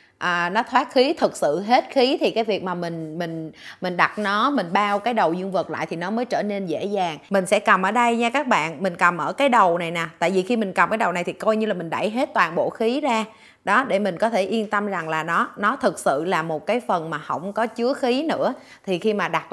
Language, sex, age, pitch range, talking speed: Vietnamese, female, 20-39, 165-230 Hz, 285 wpm